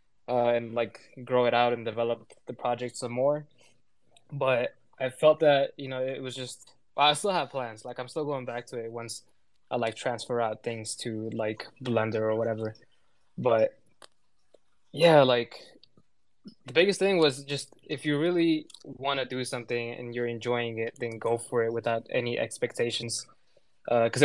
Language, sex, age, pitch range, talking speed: English, male, 20-39, 115-135 Hz, 175 wpm